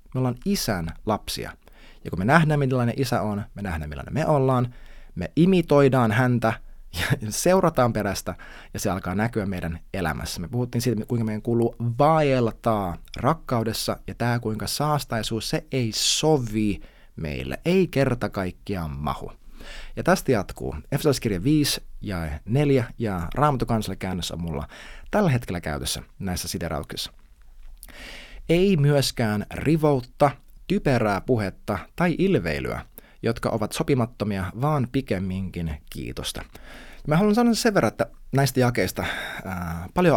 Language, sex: Finnish, male